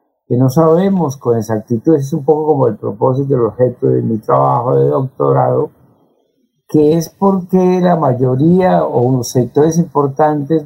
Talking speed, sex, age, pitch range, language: 150 wpm, male, 50-69, 125-165 Hz, Spanish